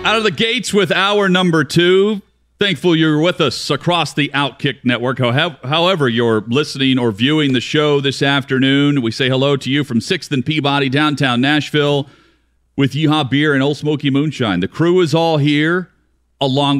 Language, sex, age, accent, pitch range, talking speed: English, male, 40-59, American, 105-140 Hz, 175 wpm